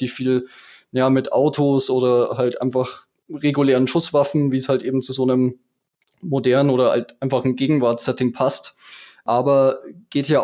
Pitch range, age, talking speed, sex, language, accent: 130-145 Hz, 20-39, 155 wpm, male, German, German